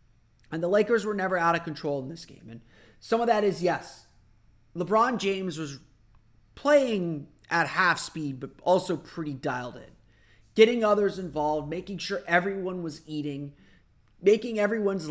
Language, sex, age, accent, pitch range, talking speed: English, male, 30-49, American, 130-195 Hz, 155 wpm